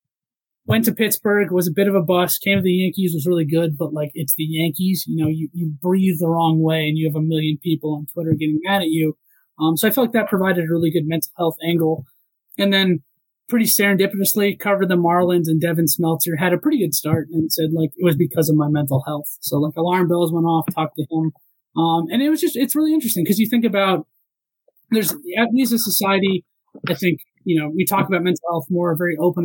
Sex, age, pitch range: male, 20-39, 160-195 Hz